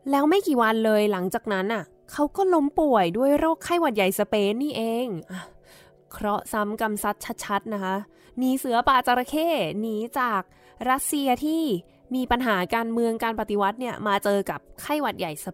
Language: Thai